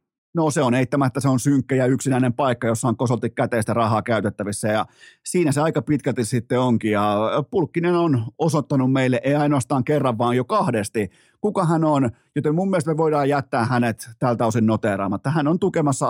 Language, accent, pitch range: Finnish, native, 115-145 Hz